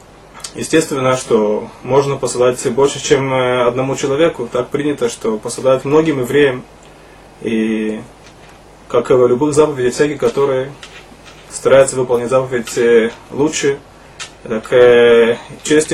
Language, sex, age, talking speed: Russian, male, 20-39, 105 wpm